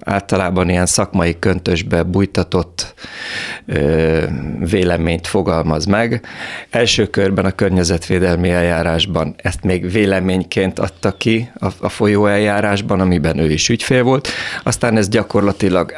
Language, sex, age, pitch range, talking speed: Hungarian, male, 30-49, 85-105 Hz, 115 wpm